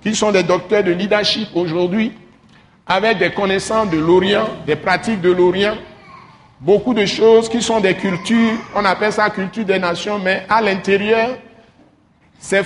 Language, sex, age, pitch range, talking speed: French, male, 60-79, 185-230 Hz, 155 wpm